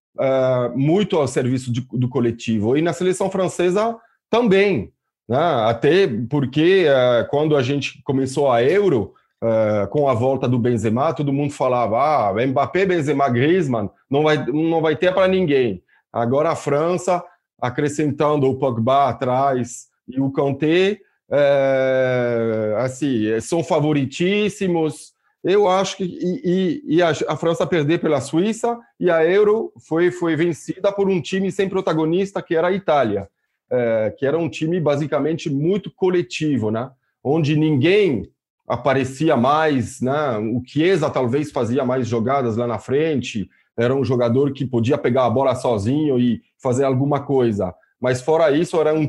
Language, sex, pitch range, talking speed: Portuguese, male, 130-175 Hz, 150 wpm